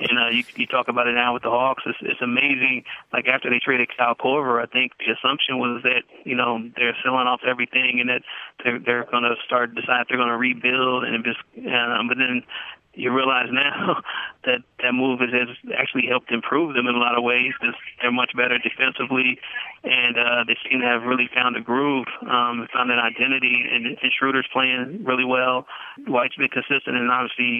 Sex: male